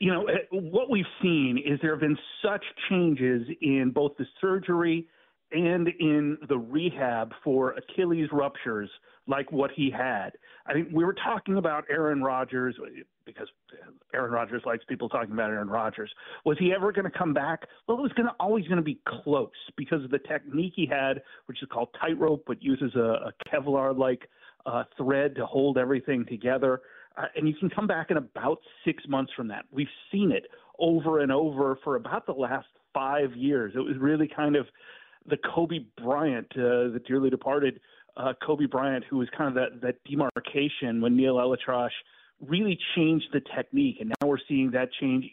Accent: American